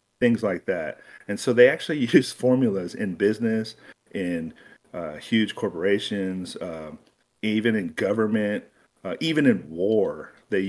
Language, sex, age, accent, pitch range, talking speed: English, male, 40-59, American, 95-115 Hz, 135 wpm